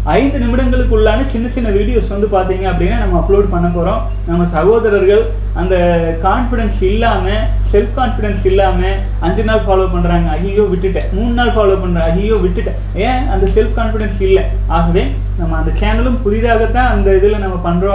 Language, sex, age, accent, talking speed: Tamil, male, 30-49, native, 145 wpm